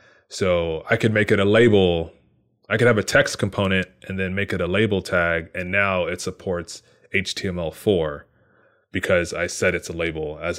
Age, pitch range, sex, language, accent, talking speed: 20-39, 85-105 Hz, male, English, American, 180 wpm